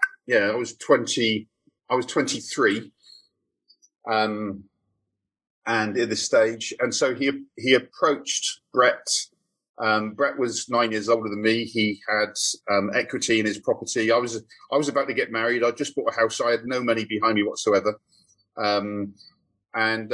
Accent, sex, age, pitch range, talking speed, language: British, male, 40-59, 110-130 Hz, 165 wpm, English